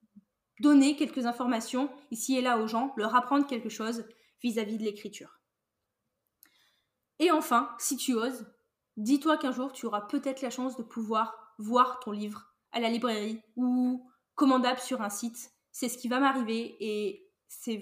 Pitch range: 225-275 Hz